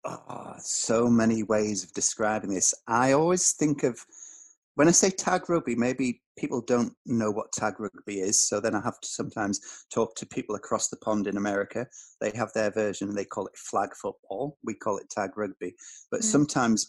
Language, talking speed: English, 190 wpm